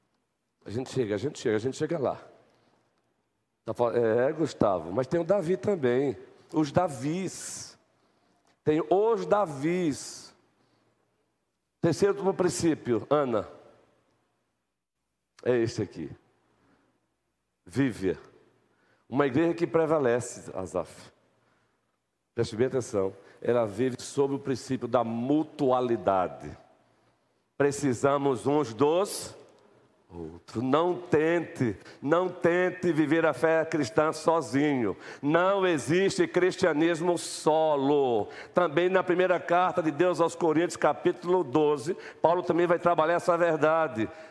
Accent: Brazilian